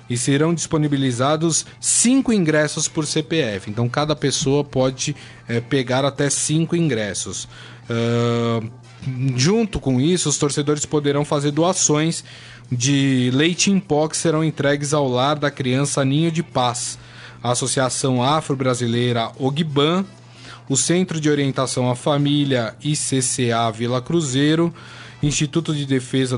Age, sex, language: 20-39, male, Portuguese